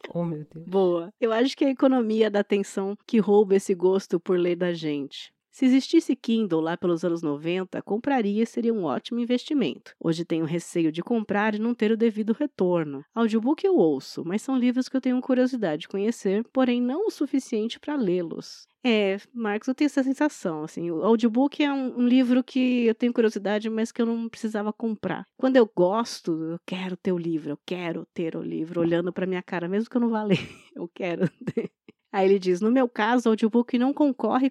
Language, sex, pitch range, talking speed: Portuguese, female, 185-250 Hz, 205 wpm